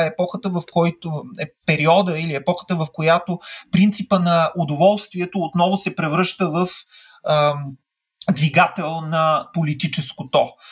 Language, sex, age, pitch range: Bulgarian, male, 30-49, 155-205 Hz